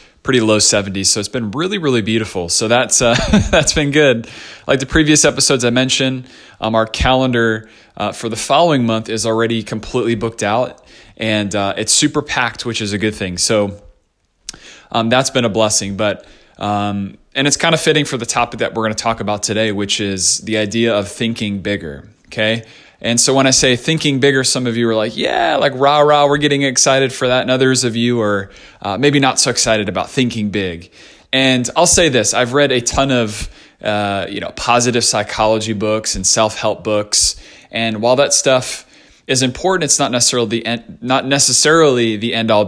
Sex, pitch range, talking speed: male, 105-130 Hz, 195 wpm